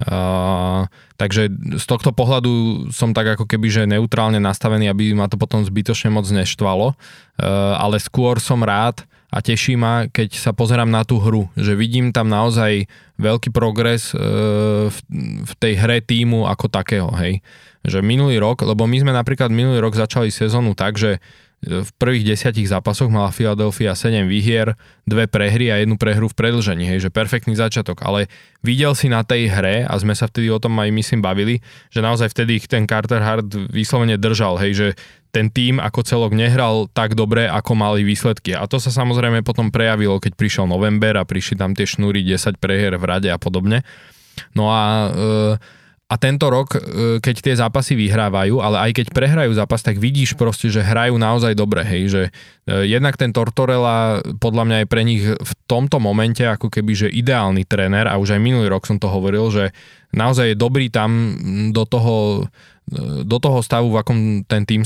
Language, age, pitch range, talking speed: Slovak, 20-39, 105-120 Hz, 180 wpm